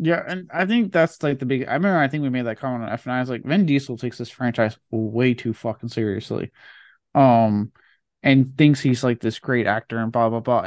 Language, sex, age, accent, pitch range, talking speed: English, male, 20-39, American, 120-150 Hz, 235 wpm